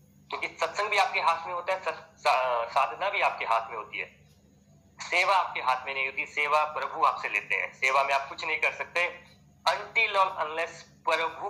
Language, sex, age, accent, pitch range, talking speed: Hindi, male, 30-49, native, 120-170 Hz, 190 wpm